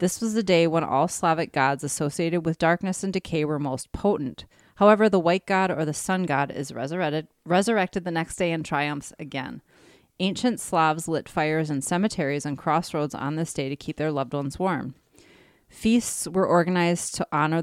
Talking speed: 185 wpm